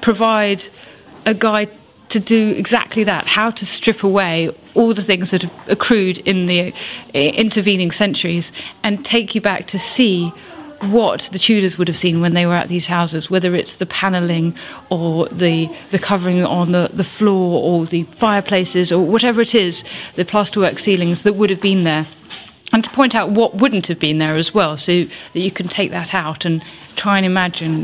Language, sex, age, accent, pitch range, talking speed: English, female, 30-49, British, 175-220 Hz, 190 wpm